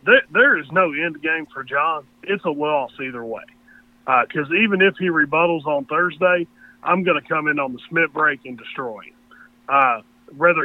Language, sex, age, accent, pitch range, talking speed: English, male, 40-59, American, 140-195 Hz, 190 wpm